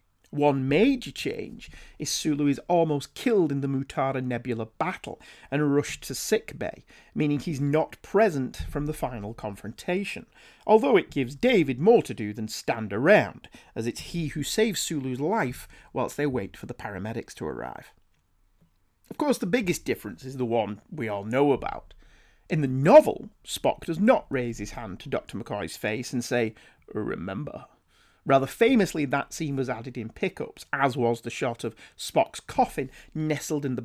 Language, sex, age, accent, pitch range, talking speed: English, male, 40-59, British, 125-180 Hz, 170 wpm